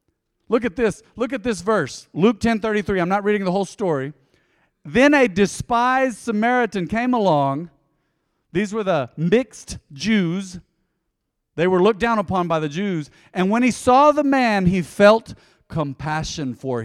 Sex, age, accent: male, 40-59, American